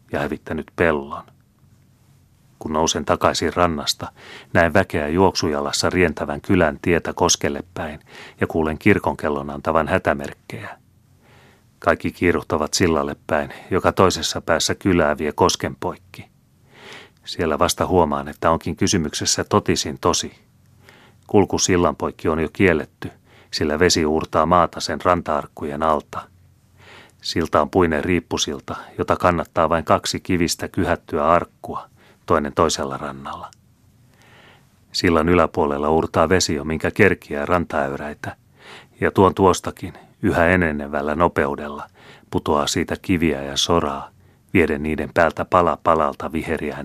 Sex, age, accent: male, 30-49, native